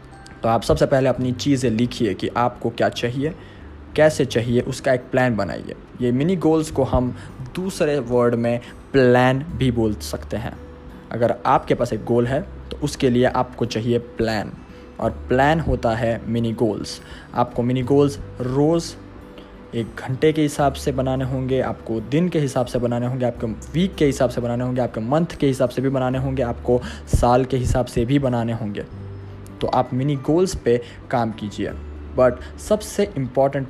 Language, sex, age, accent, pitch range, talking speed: Hindi, male, 20-39, native, 115-140 Hz, 175 wpm